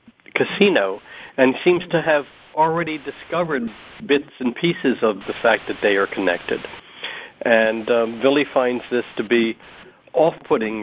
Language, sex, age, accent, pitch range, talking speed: English, male, 60-79, American, 115-150 Hz, 140 wpm